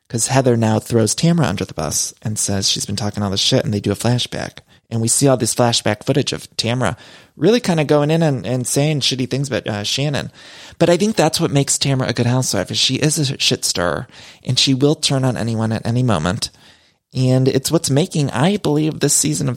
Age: 30-49